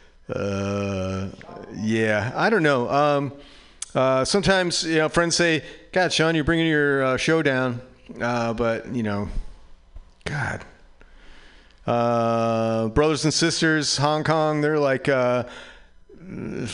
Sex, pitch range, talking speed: male, 110-150 Hz, 120 wpm